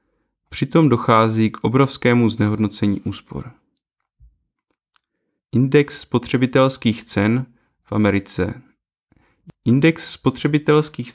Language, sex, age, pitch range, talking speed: Czech, male, 30-49, 105-130 Hz, 70 wpm